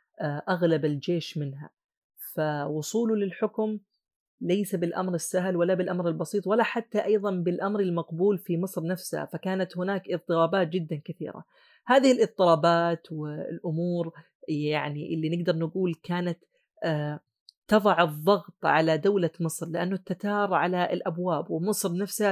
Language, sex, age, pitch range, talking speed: Arabic, female, 30-49, 165-200 Hz, 115 wpm